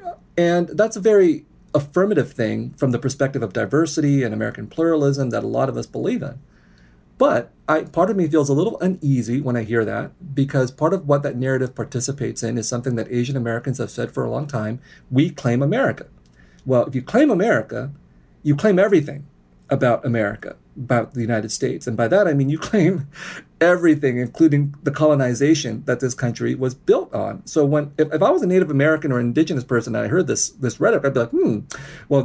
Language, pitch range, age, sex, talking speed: English, 120-155 Hz, 30-49, male, 205 wpm